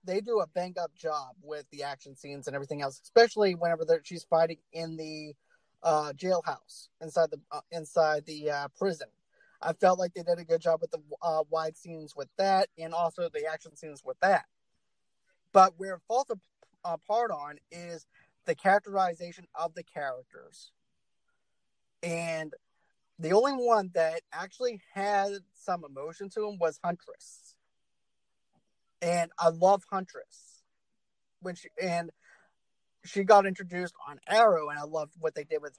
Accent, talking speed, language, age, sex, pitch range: American, 155 wpm, English, 30-49, male, 160-205 Hz